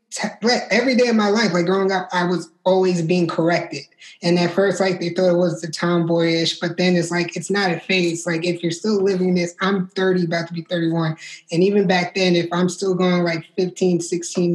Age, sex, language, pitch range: 20-39, male, English, 170-185 Hz